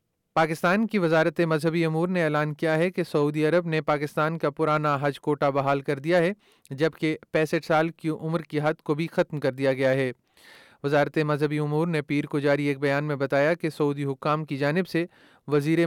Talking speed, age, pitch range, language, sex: 205 wpm, 30-49, 140-160 Hz, Urdu, male